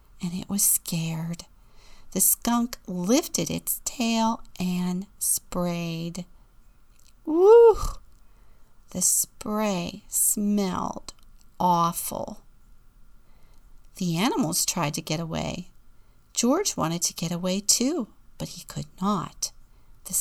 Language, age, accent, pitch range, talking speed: English, 50-69, American, 165-225 Hz, 100 wpm